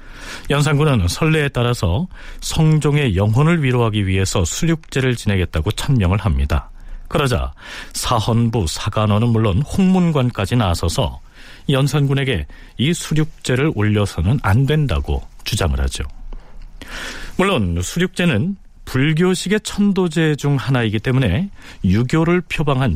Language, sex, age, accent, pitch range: Korean, male, 40-59, native, 100-150 Hz